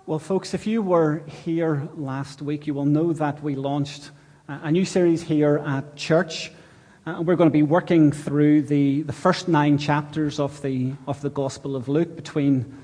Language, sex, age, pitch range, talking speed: English, male, 30-49, 145-170 Hz, 190 wpm